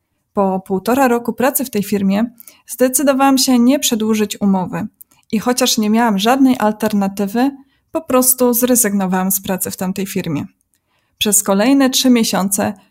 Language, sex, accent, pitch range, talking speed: Polish, female, native, 205-245 Hz, 140 wpm